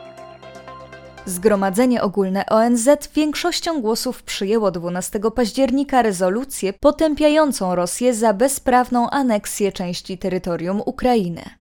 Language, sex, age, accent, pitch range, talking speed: Polish, female, 20-39, native, 190-260 Hz, 90 wpm